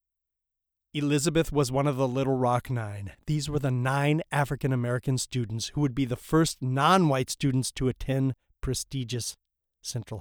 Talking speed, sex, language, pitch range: 145 wpm, male, English, 105-140 Hz